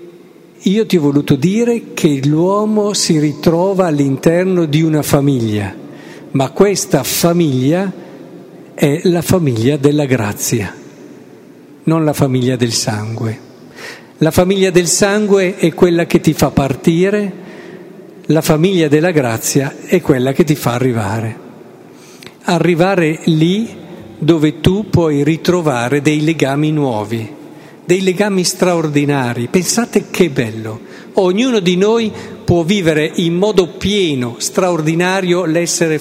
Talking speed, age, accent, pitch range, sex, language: 120 wpm, 50-69, native, 145-185 Hz, male, Italian